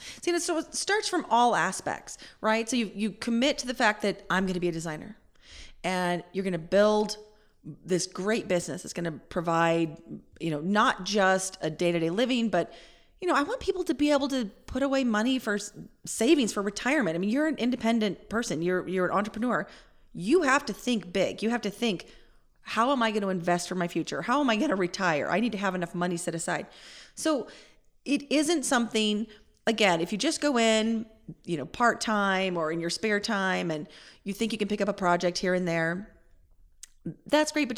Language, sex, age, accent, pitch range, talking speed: English, female, 30-49, American, 175-245 Hz, 210 wpm